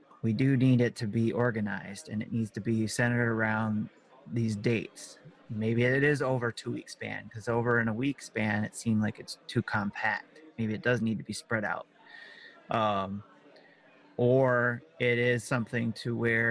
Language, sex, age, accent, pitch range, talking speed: English, male, 30-49, American, 110-120 Hz, 180 wpm